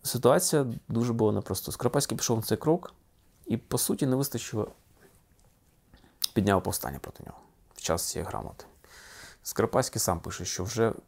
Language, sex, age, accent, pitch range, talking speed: Russian, male, 20-39, native, 95-120 Hz, 145 wpm